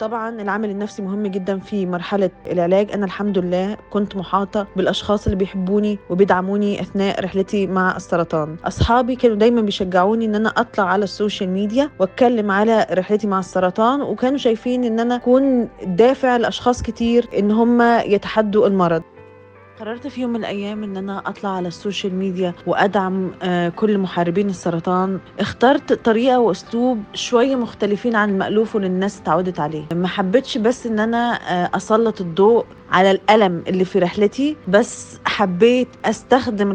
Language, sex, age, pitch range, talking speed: Arabic, female, 20-39, 190-235 Hz, 140 wpm